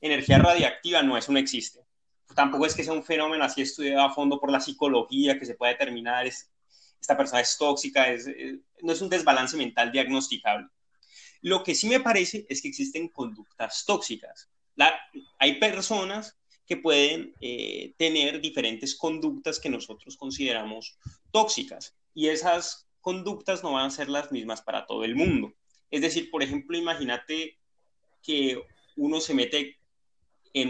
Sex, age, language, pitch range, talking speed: male, 30-49, Spanish, 125-165 Hz, 160 wpm